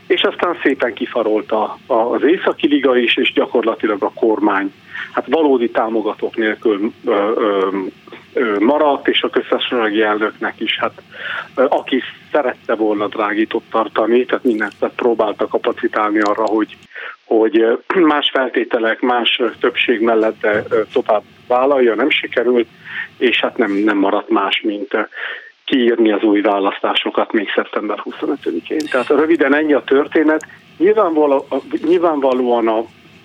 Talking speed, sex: 130 wpm, male